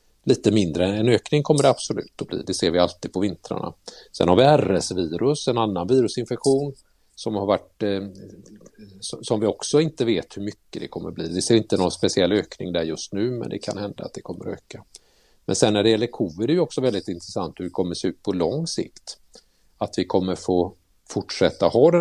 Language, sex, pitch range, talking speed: Swedish, male, 85-115 Hz, 220 wpm